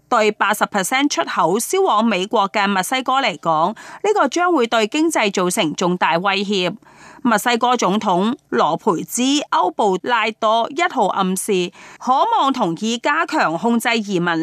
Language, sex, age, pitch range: Chinese, female, 30-49, 195-275 Hz